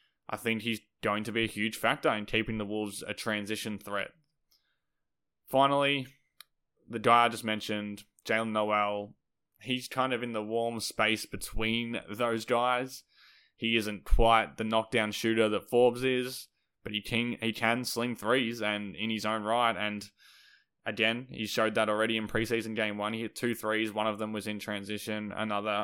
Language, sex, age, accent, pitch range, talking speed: English, male, 10-29, Australian, 105-115 Hz, 175 wpm